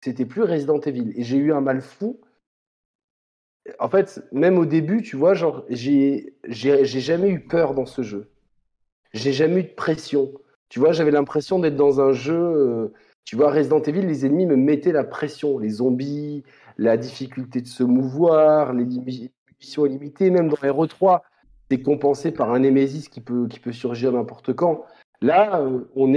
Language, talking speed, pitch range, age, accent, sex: French, 180 wpm, 120-150 Hz, 40-59, French, male